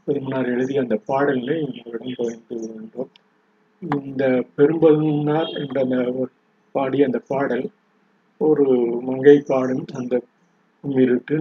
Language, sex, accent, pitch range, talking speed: Tamil, male, native, 125-150 Hz, 100 wpm